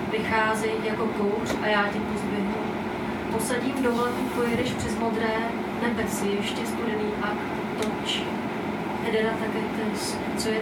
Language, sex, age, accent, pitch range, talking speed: Czech, female, 40-59, native, 200-220 Hz, 125 wpm